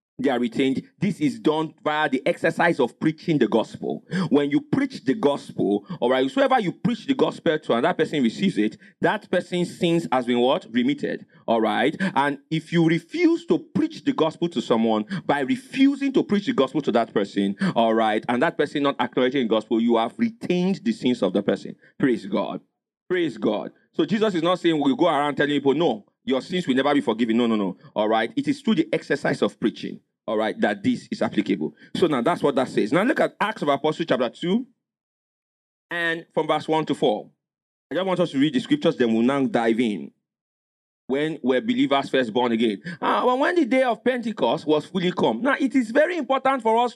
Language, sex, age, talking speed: English, male, 40-59, 215 wpm